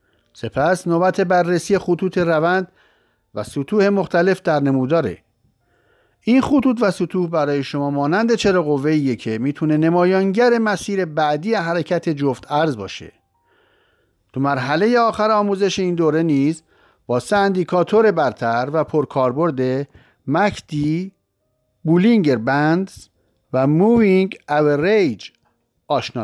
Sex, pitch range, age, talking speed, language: male, 140-195 Hz, 50-69, 105 wpm, Persian